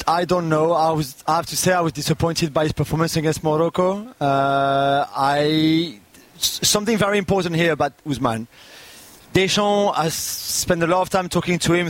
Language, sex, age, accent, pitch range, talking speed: English, male, 30-49, French, 155-185 Hz, 175 wpm